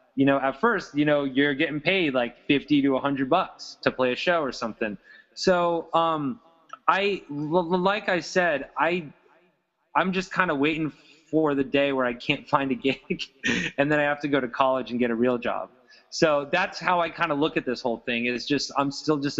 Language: English